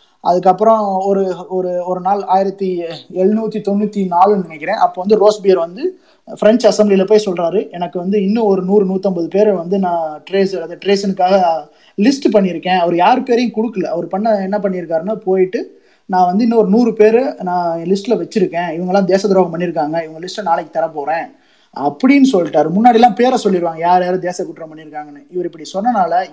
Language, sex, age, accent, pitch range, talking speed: Tamil, male, 20-39, native, 175-210 Hz, 165 wpm